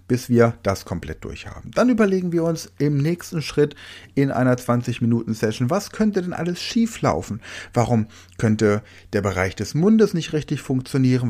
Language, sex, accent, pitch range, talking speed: German, male, German, 105-145 Hz, 155 wpm